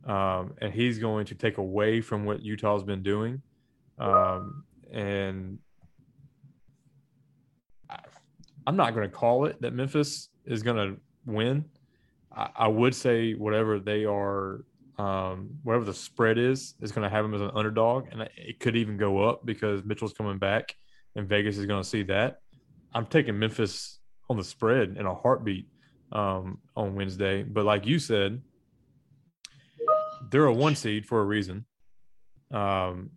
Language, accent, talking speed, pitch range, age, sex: English, American, 155 wpm, 100-125 Hz, 20-39, male